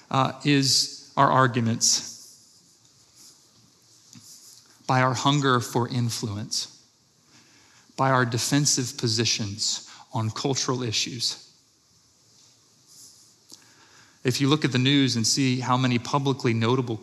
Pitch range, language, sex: 120-145 Hz, English, male